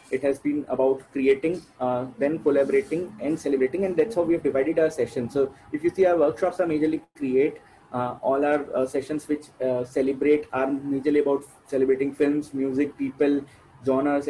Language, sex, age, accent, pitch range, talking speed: English, male, 30-49, Indian, 135-170 Hz, 180 wpm